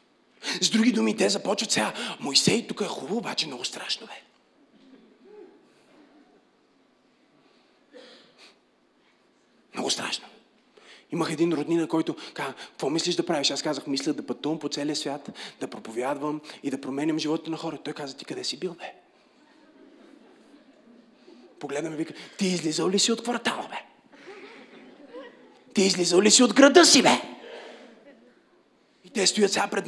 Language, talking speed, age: Bulgarian, 140 wpm, 30-49